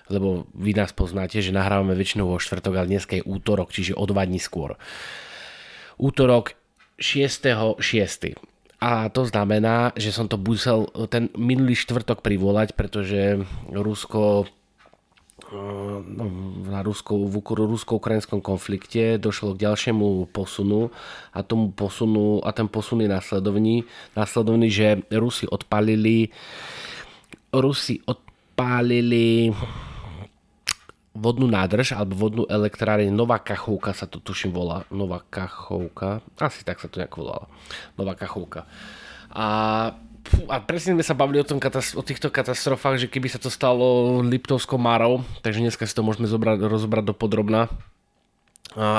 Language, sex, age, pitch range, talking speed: Slovak, male, 20-39, 100-115 Hz, 130 wpm